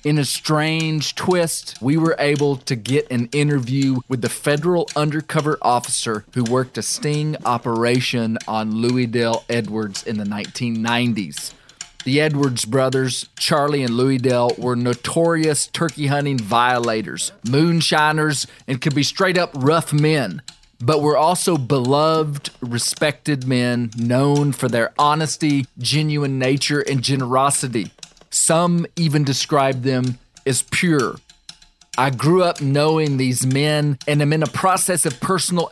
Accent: American